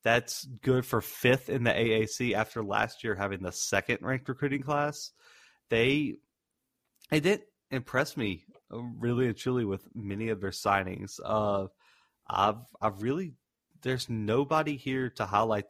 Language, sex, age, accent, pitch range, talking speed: English, male, 30-49, American, 105-125 Hz, 150 wpm